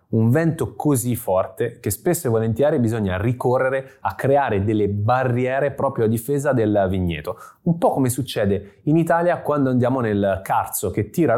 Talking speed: 165 wpm